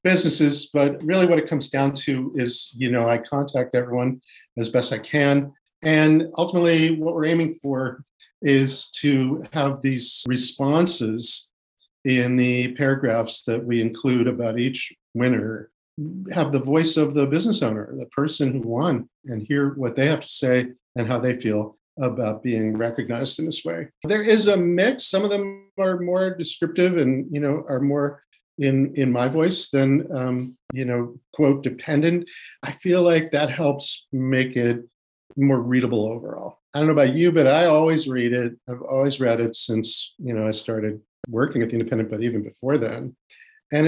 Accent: American